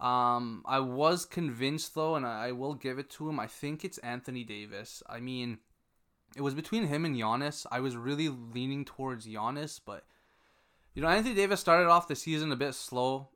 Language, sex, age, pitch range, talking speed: English, male, 20-39, 125-165 Hz, 200 wpm